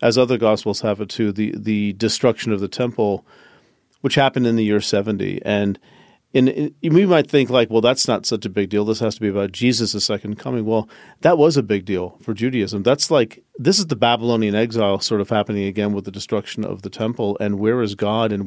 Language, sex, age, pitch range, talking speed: English, male, 40-59, 105-130 Hz, 230 wpm